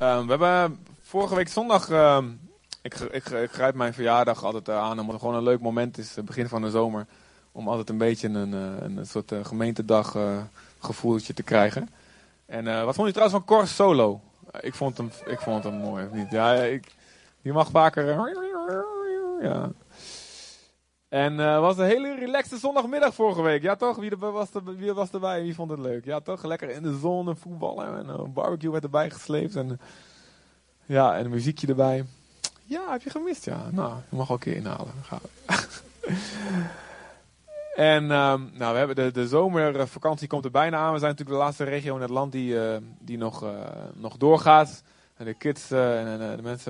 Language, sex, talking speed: Dutch, male, 195 wpm